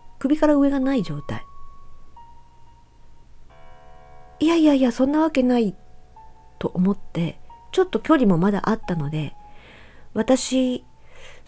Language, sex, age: Japanese, female, 40-59